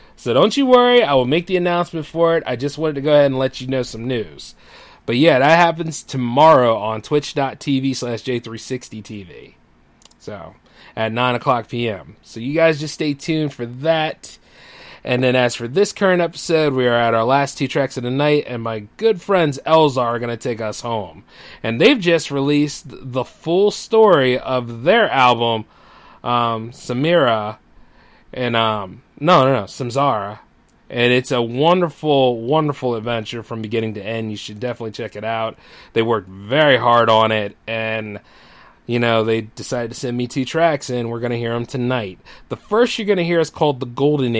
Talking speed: 190 wpm